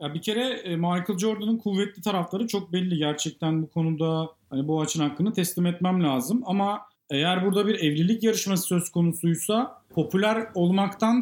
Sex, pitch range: male, 175-220 Hz